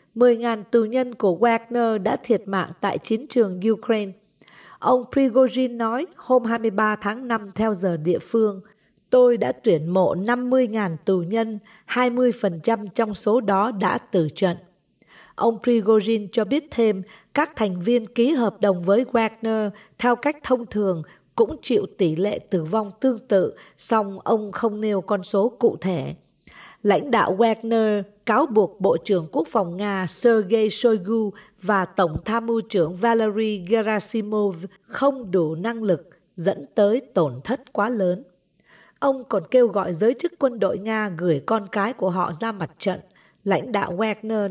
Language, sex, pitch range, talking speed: English, female, 195-235 Hz, 160 wpm